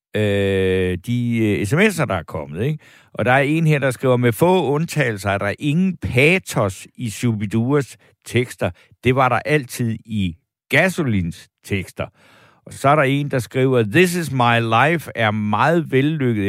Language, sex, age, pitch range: Danish, male, 60-79, 105-135 Hz